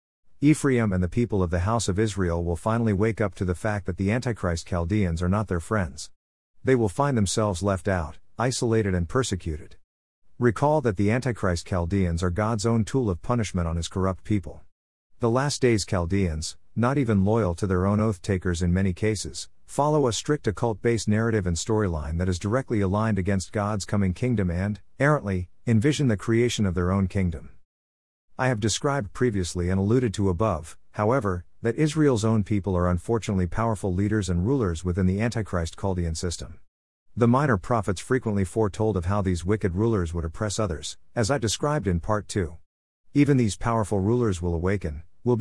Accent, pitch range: American, 90-115 Hz